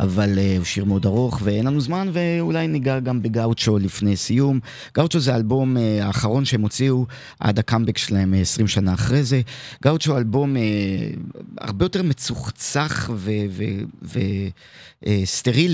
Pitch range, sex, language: 105-135 Hz, male, Hebrew